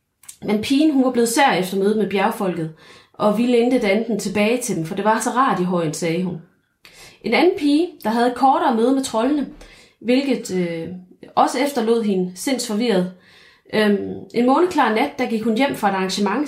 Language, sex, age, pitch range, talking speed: Danish, female, 30-49, 190-255 Hz, 195 wpm